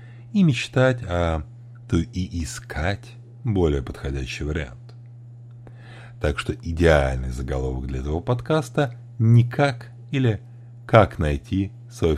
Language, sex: Russian, male